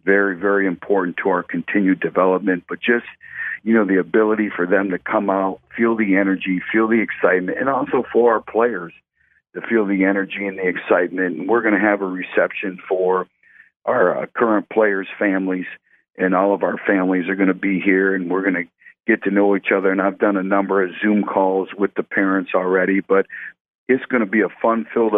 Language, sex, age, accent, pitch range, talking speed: English, male, 50-69, American, 95-105 Hz, 210 wpm